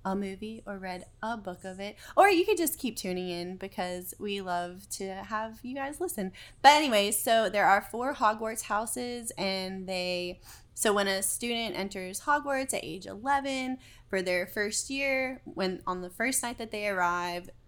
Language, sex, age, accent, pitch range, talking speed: English, female, 20-39, American, 180-235 Hz, 185 wpm